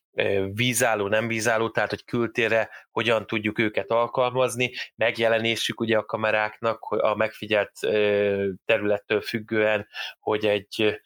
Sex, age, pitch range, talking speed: male, 20-39, 105-115 Hz, 110 wpm